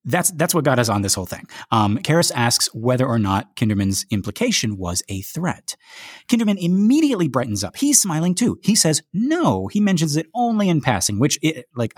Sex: male